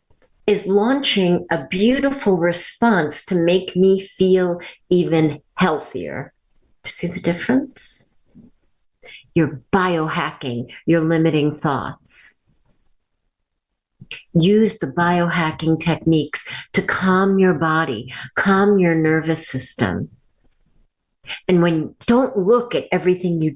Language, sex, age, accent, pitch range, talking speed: English, female, 50-69, American, 160-195 Hz, 100 wpm